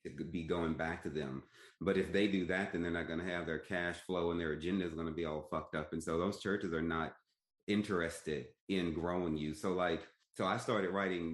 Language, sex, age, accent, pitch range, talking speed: English, male, 30-49, American, 80-95 Hz, 245 wpm